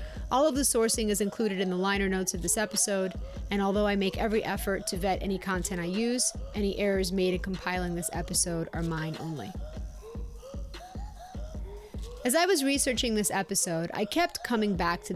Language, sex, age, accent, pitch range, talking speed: English, female, 30-49, American, 185-235 Hz, 180 wpm